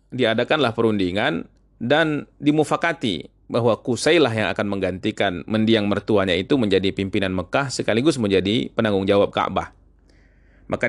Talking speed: 115 wpm